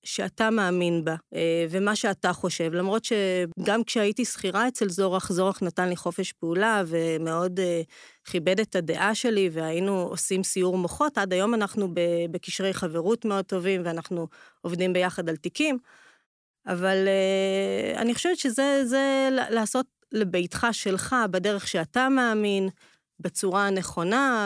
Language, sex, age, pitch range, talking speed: Hebrew, female, 30-49, 180-225 Hz, 125 wpm